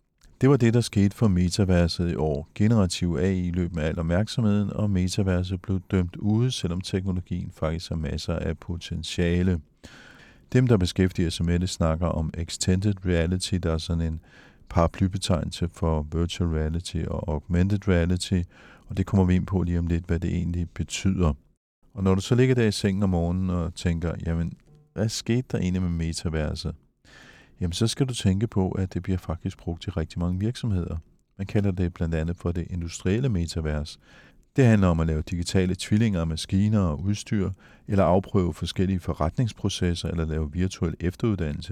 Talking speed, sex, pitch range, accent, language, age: 175 wpm, male, 85-100 Hz, native, Danish, 50-69